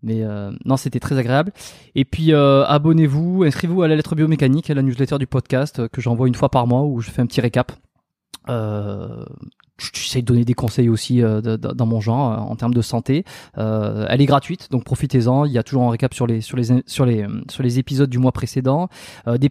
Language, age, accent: French, 20-39, French